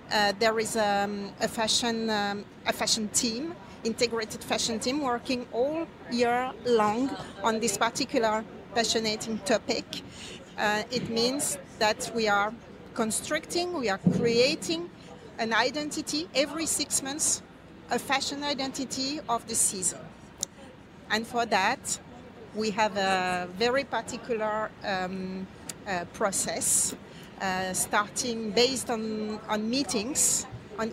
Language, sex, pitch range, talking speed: English, female, 205-245 Hz, 120 wpm